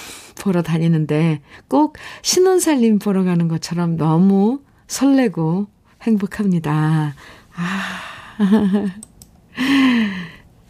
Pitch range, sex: 165-220 Hz, female